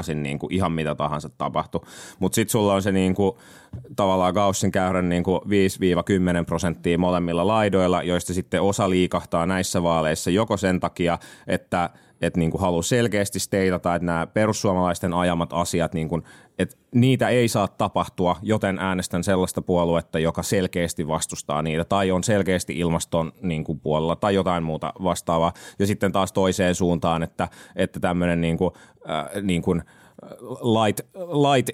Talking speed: 140 wpm